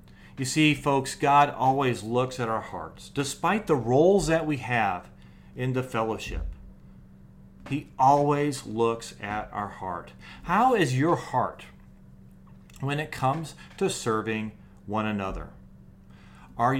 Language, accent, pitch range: English, American, 80-135 Hz